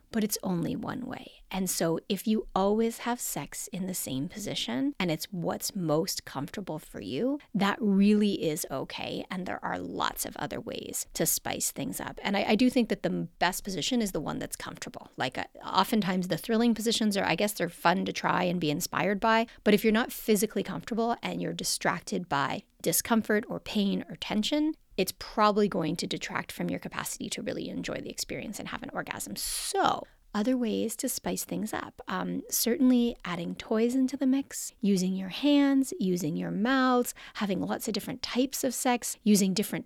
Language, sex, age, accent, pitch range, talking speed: English, female, 30-49, American, 190-245 Hz, 195 wpm